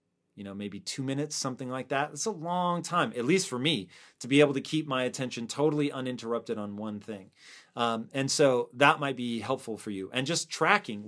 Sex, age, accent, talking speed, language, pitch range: male, 30-49, American, 215 wpm, English, 115-150 Hz